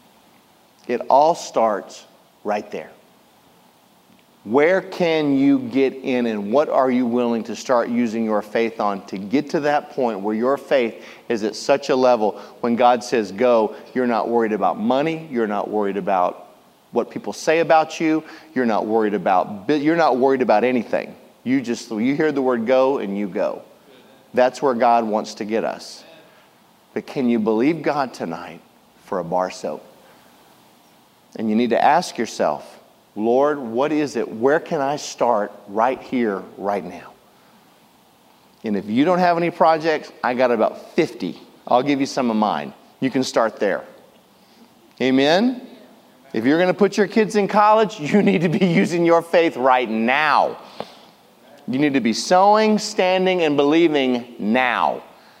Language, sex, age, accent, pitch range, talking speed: English, male, 40-59, American, 115-160 Hz, 170 wpm